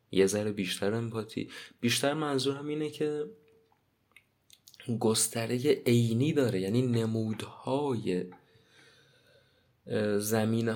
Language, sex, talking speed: Persian, male, 80 wpm